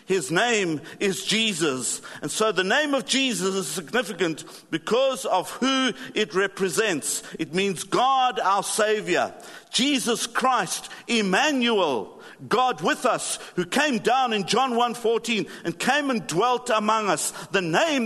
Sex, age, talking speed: male, 50-69, 140 wpm